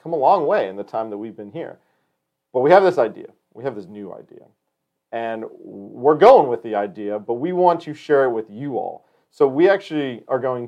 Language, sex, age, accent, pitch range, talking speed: English, male, 40-59, American, 110-160 Hz, 230 wpm